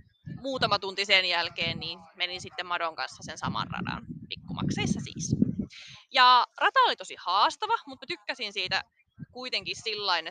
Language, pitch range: Finnish, 175-240 Hz